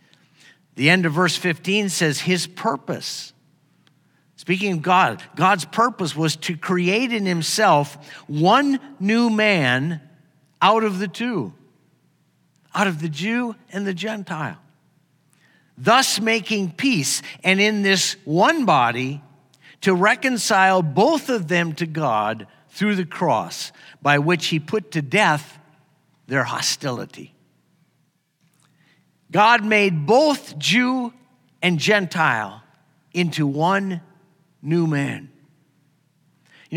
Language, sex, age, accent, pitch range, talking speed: English, male, 50-69, American, 150-190 Hz, 115 wpm